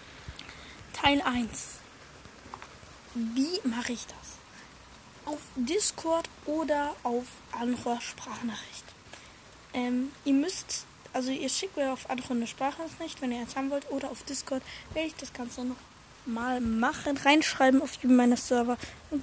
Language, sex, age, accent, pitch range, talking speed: German, female, 10-29, German, 245-295 Hz, 135 wpm